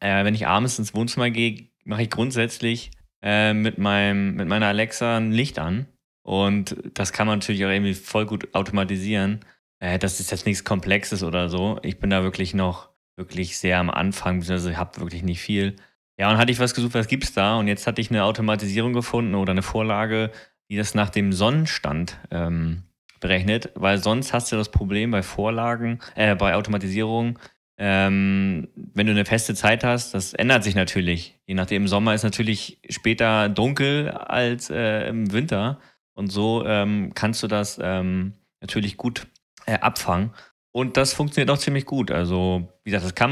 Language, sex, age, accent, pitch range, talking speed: German, male, 20-39, German, 95-115 Hz, 180 wpm